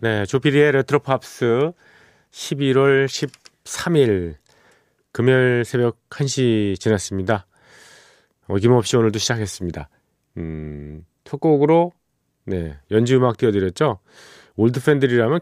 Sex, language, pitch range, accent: male, Korean, 95-130 Hz, native